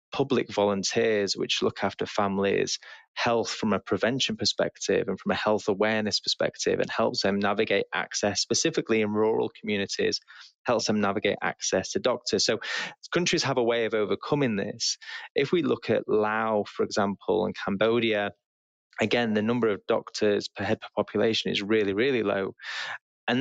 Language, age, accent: English, 20-39, British